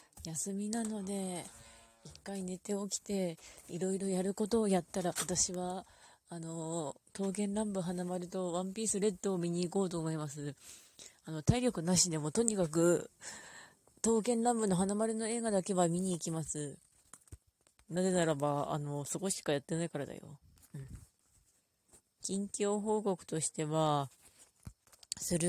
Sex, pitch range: female, 150-195 Hz